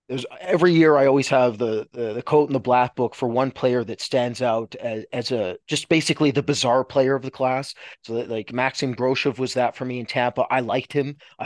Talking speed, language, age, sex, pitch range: 240 wpm, English, 30-49, male, 125-150 Hz